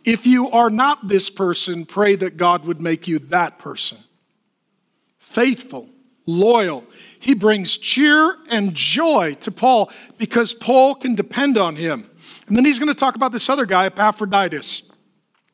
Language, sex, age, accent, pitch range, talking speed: English, male, 50-69, American, 200-265 Hz, 150 wpm